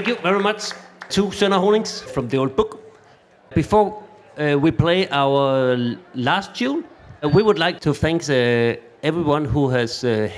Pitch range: 130-175 Hz